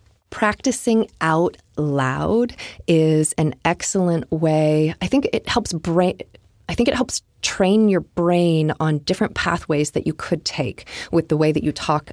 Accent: American